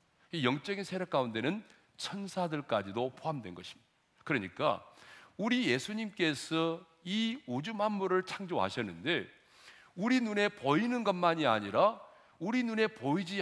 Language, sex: Korean, male